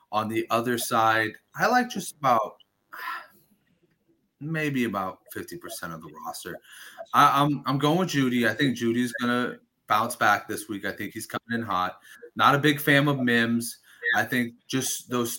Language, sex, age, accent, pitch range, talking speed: English, male, 30-49, American, 115-150 Hz, 175 wpm